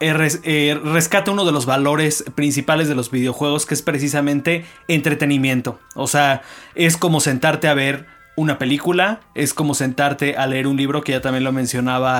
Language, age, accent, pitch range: Spanish, 30-49, Mexican, 135-155 Hz